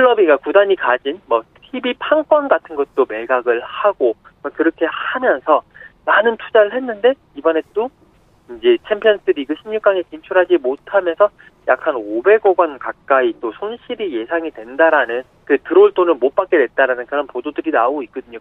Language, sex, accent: Korean, male, native